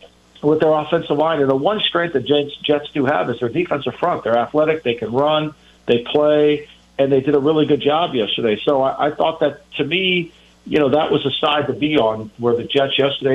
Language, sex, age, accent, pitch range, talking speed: English, male, 50-69, American, 130-150 Hz, 235 wpm